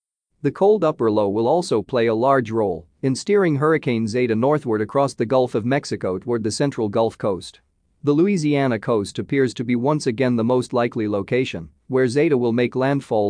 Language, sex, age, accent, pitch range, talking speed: English, male, 40-59, American, 110-140 Hz, 190 wpm